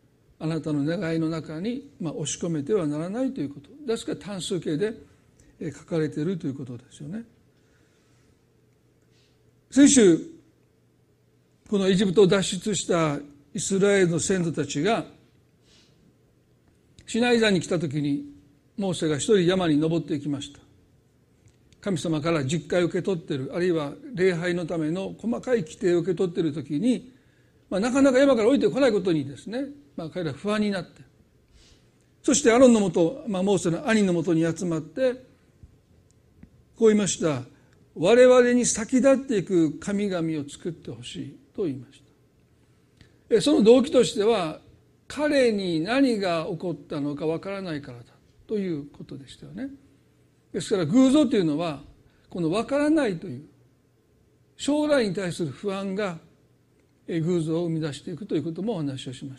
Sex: male